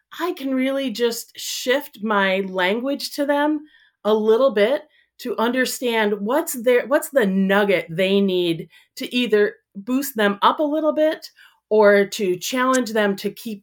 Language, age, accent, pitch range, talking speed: English, 40-59, American, 175-250 Hz, 155 wpm